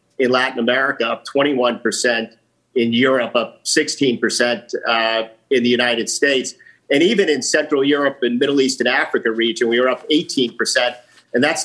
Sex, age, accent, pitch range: male, 50-69, American, 120-140 Hz